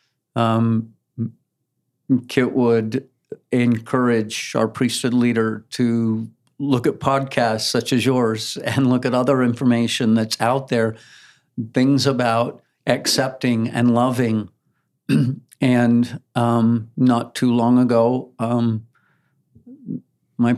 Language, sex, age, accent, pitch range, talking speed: English, male, 50-69, American, 110-125 Hz, 100 wpm